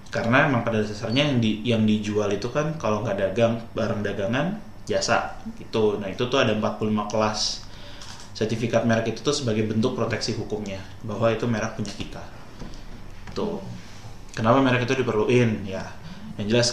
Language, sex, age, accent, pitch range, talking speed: Indonesian, male, 20-39, native, 100-115 Hz, 160 wpm